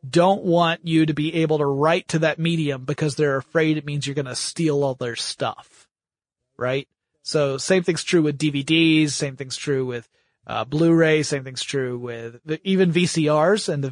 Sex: male